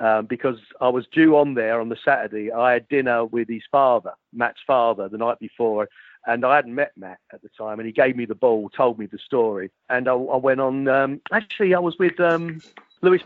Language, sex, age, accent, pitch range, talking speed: English, male, 40-59, British, 135-180 Hz, 230 wpm